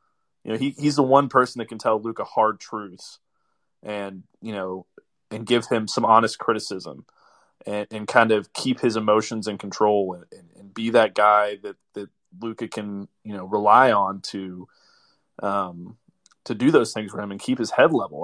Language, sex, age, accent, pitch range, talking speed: English, male, 20-39, American, 100-125 Hz, 190 wpm